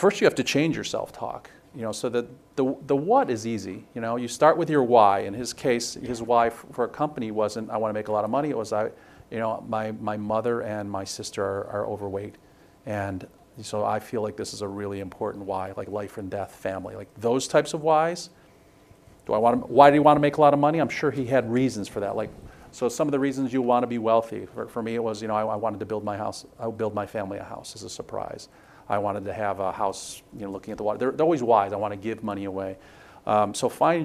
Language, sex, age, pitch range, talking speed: English, male, 40-59, 105-135 Hz, 275 wpm